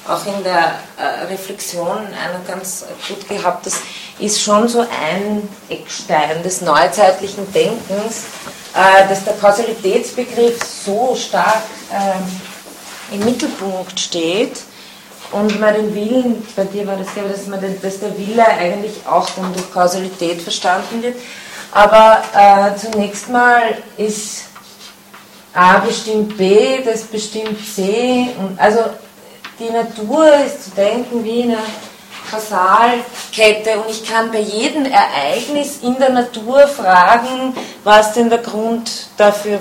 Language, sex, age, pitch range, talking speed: German, female, 20-39, 185-225 Hz, 125 wpm